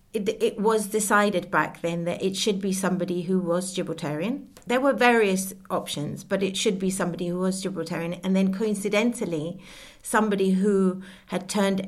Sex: female